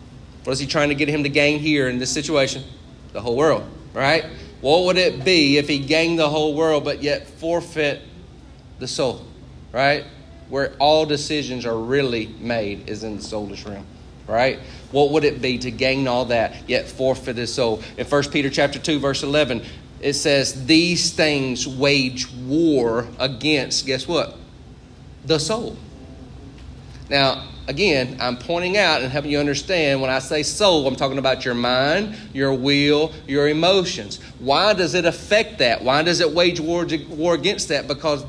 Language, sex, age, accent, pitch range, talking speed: English, male, 30-49, American, 130-165 Hz, 170 wpm